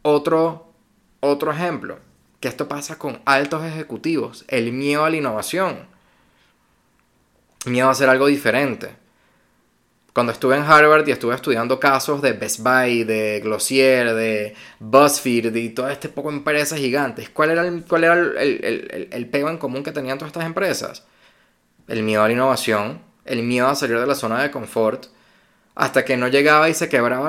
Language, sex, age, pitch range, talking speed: Spanish, male, 20-39, 125-155 Hz, 170 wpm